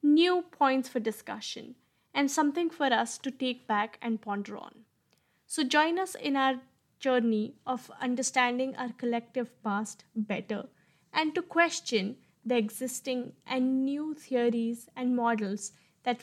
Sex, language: female, English